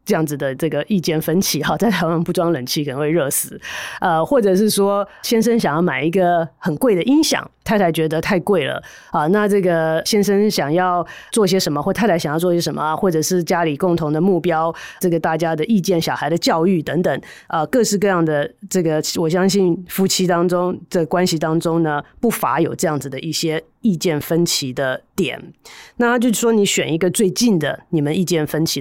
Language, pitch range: Chinese, 160-195 Hz